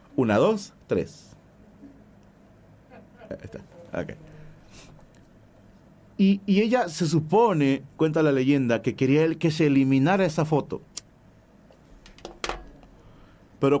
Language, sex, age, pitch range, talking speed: Spanish, male, 40-59, 110-165 Hz, 85 wpm